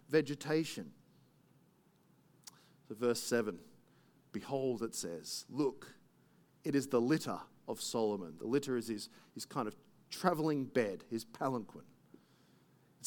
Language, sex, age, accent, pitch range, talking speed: English, male, 40-59, Australian, 140-190 Hz, 125 wpm